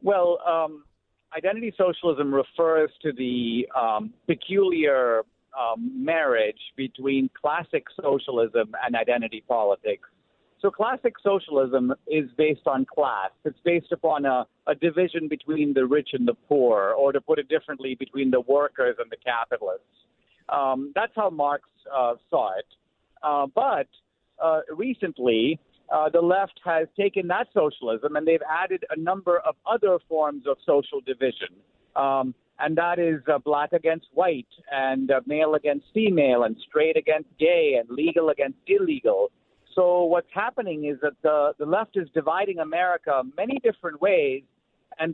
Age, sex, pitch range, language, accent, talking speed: 50-69, male, 145-195 Hz, English, American, 150 wpm